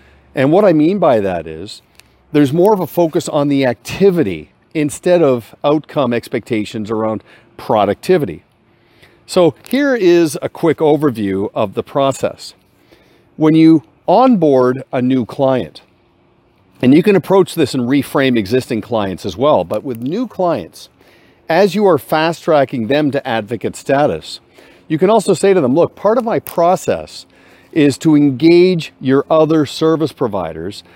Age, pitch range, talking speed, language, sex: 50-69, 115-165 Hz, 150 wpm, English, male